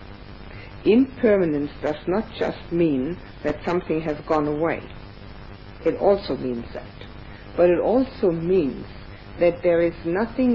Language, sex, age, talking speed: English, female, 60-79, 125 wpm